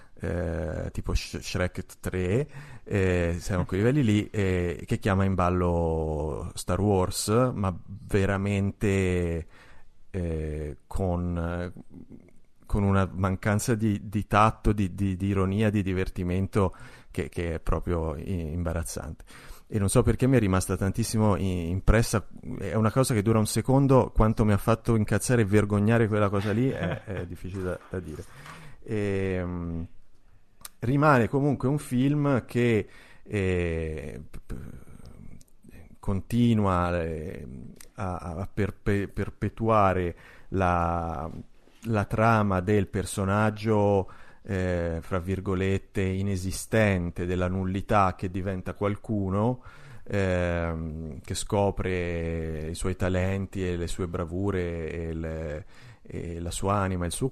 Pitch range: 90-105 Hz